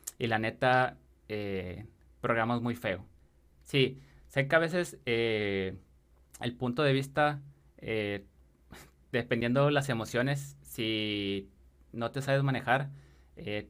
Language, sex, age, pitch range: Spanish, male, 20-39, 105-135 Hz